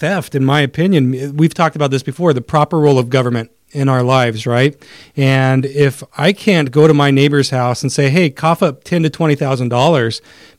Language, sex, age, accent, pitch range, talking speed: English, male, 40-59, American, 130-150 Hz, 200 wpm